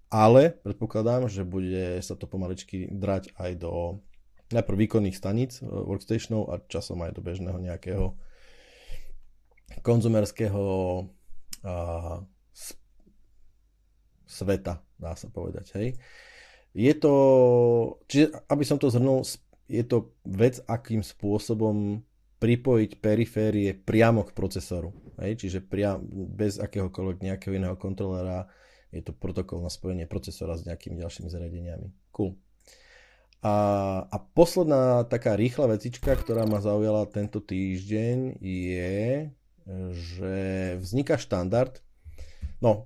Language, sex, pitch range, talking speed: Slovak, male, 95-115 Hz, 110 wpm